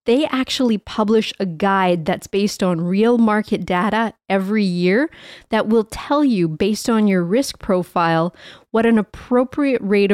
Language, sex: English, female